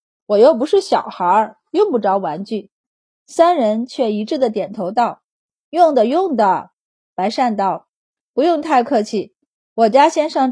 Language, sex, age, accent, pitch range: Chinese, female, 30-49, native, 210-280 Hz